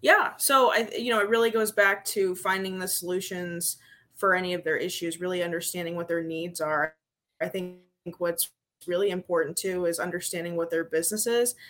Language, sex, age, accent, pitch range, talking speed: English, female, 20-39, American, 170-195 Hz, 185 wpm